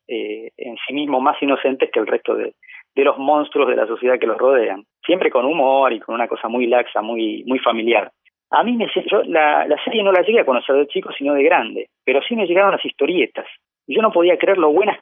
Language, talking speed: Spanish, 245 wpm